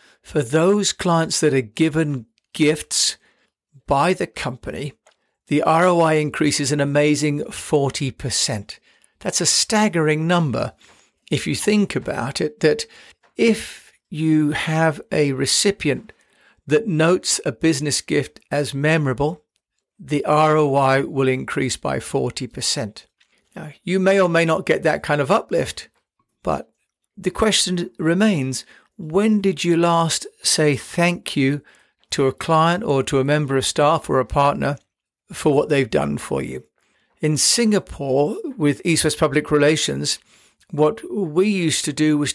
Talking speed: 135 wpm